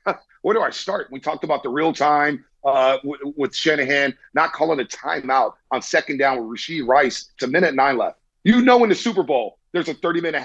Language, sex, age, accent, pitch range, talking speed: English, male, 40-59, American, 135-200 Hz, 205 wpm